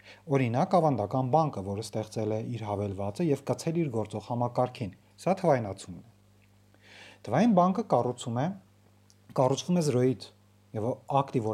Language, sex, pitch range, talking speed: Russian, male, 100-140 Hz, 95 wpm